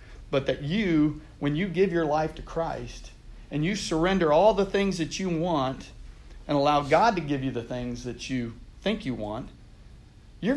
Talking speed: 185 wpm